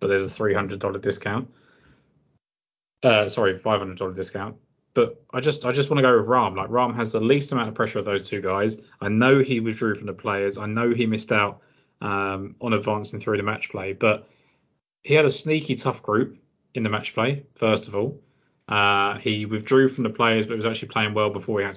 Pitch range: 100-115 Hz